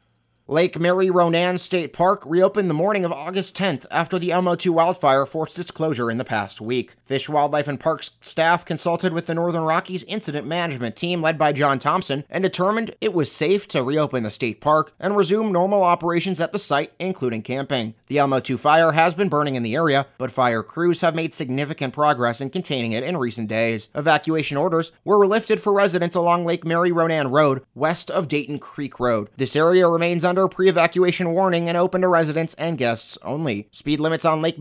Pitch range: 135-180 Hz